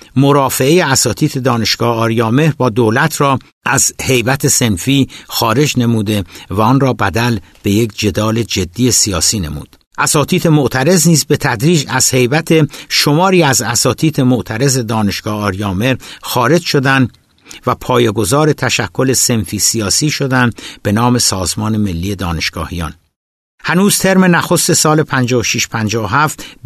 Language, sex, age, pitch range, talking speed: Persian, male, 60-79, 110-140 Hz, 120 wpm